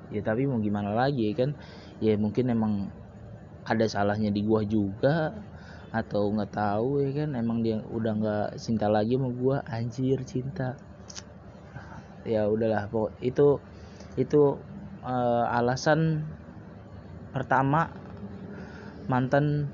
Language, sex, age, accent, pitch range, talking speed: Indonesian, male, 20-39, native, 105-140 Hz, 115 wpm